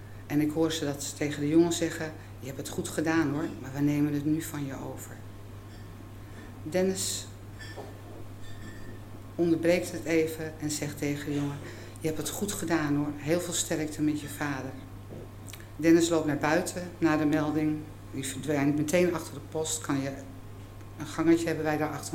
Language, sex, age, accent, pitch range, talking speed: Dutch, female, 50-69, Dutch, 105-160 Hz, 175 wpm